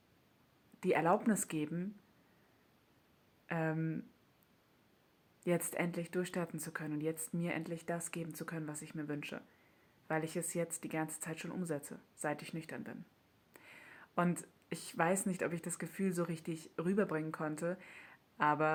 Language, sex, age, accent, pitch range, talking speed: German, female, 20-39, German, 150-175 Hz, 145 wpm